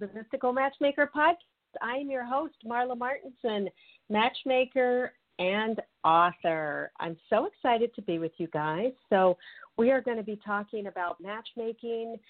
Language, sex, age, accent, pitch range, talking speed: English, female, 50-69, American, 170-235 Hz, 145 wpm